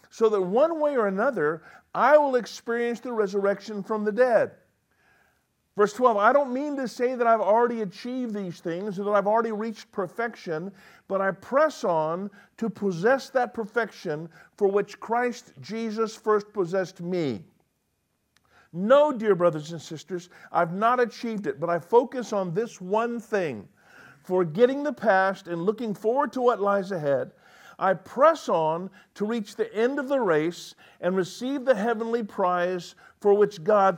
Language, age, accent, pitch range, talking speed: English, 50-69, American, 195-245 Hz, 160 wpm